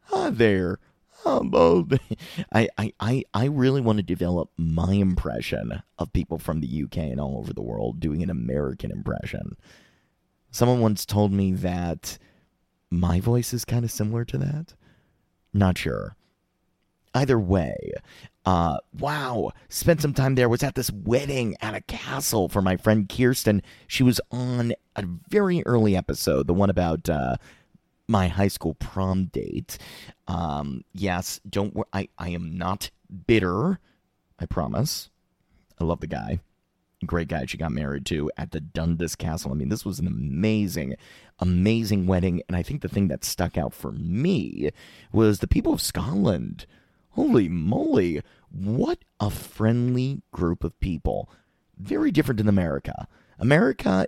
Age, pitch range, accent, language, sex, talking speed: 30-49, 85-115 Hz, American, English, male, 155 wpm